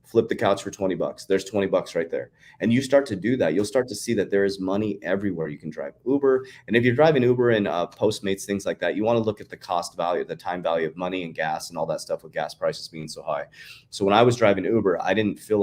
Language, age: English, 30-49